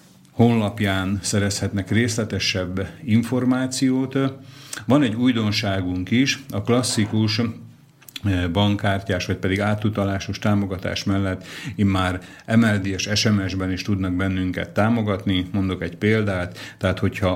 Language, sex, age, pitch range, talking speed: Slovak, male, 50-69, 95-110 Hz, 100 wpm